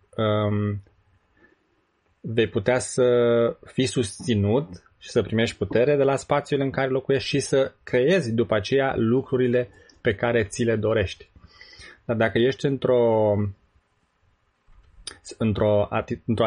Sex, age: male, 20-39